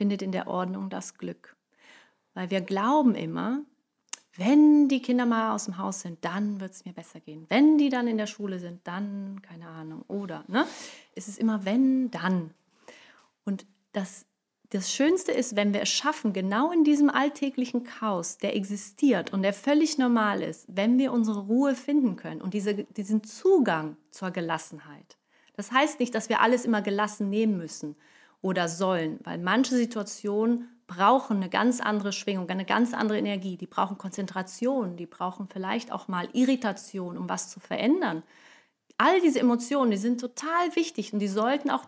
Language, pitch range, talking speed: German, 195-260 Hz, 175 wpm